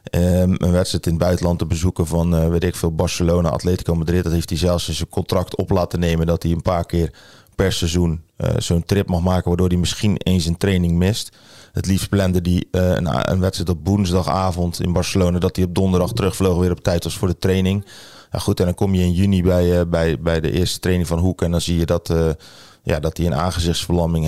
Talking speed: 240 wpm